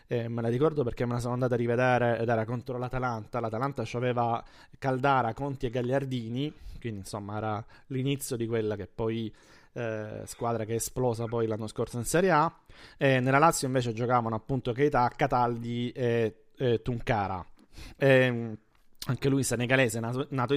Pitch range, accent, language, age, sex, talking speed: 115-135 Hz, native, Italian, 30-49, male, 165 wpm